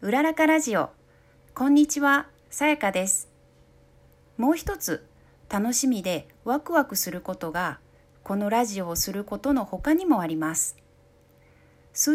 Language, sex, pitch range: Japanese, female, 180-275 Hz